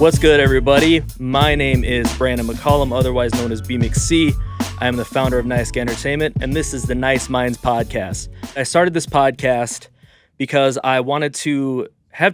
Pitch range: 120-145 Hz